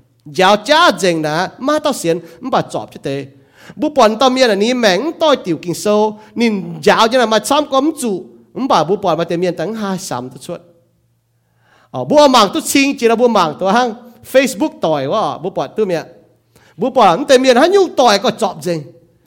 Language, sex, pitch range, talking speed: English, male, 160-250 Hz, 95 wpm